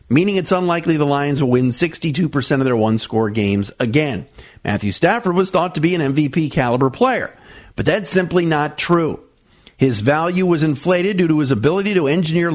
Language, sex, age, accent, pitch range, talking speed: English, male, 50-69, American, 125-165 Hz, 175 wpm